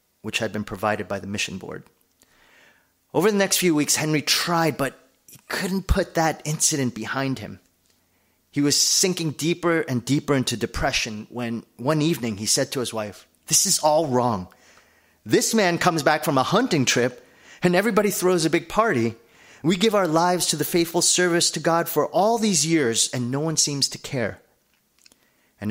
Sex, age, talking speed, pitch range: male, 30-49, 180 wpm, 105-155 Hz